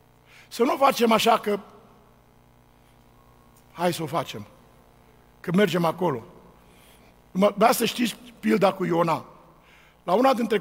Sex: male